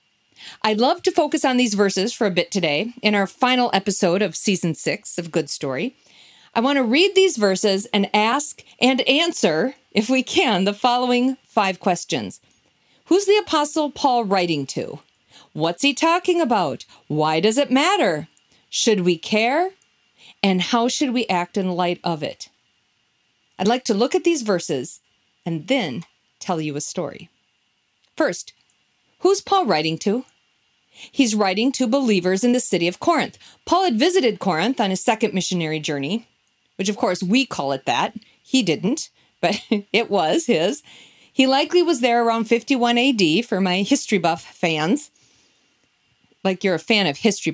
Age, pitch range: 40-59, 185-265 Hz